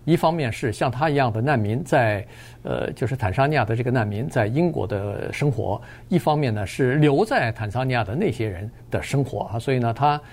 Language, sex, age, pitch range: Chinese, male, 50-69, 120-160 Hz